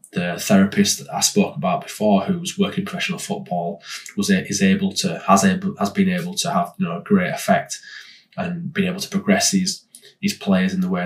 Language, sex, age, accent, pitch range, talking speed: English, male, 20-39, British, 180-205 Hz, 215 wpm